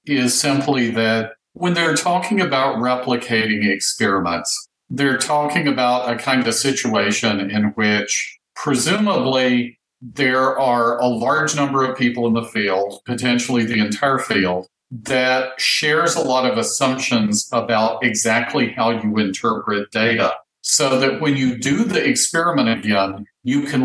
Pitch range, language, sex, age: 115-145 Hz, English, male, 50-69